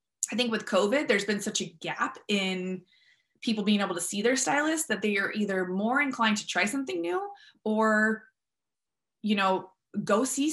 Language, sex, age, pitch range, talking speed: English, female, 20-39, 190-235 Hz, 180 wpm